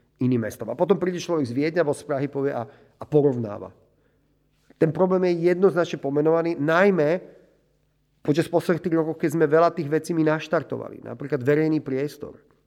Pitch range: 130-155 Hz